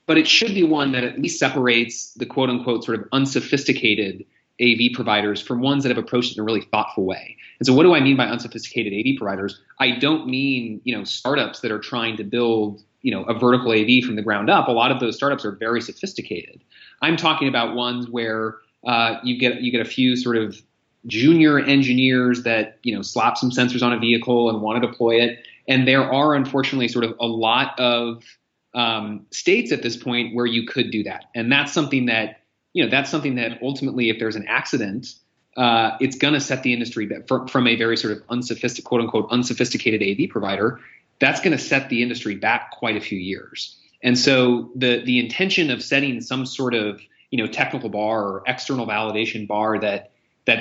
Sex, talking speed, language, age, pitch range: male, 210 wpm, English, 30-49, 110-130 Hz